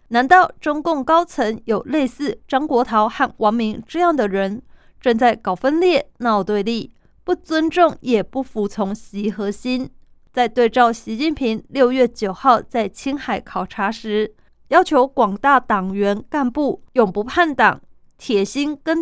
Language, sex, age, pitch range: Chinese, female, 20-39, 210-280 Hz